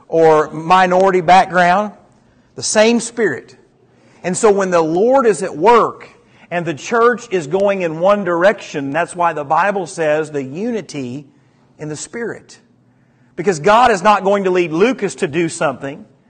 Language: English